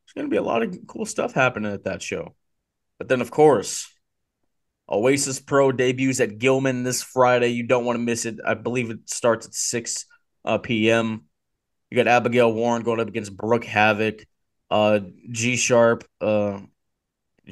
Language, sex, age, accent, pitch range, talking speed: English, male, 20-39, American, 110-125 Hz, 170 wpm